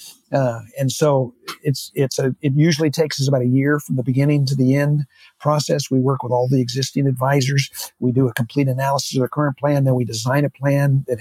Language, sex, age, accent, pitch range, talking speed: English, male, 50-69, American, 130-150 Hz, 225 wpm